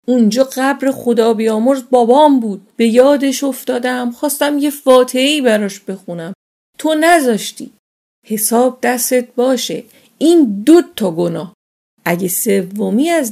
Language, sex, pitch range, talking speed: Persian, female, 215-275 Hz, 115 wpm